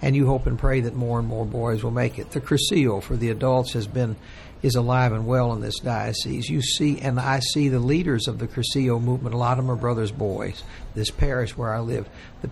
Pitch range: 115-135 Hz